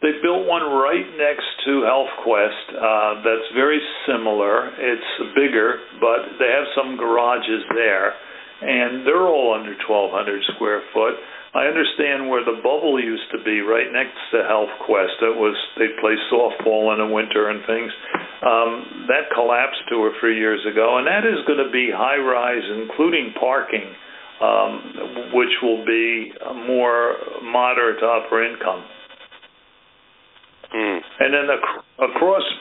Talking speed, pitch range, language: 140 wpm, 110-145 Hz, English